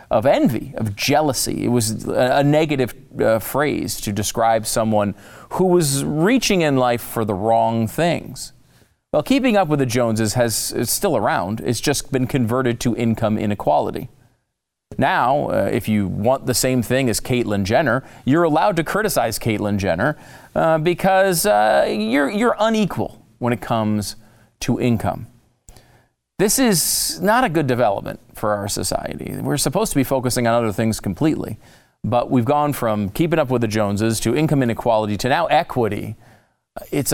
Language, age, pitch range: English, 40-59, 110-145 Hz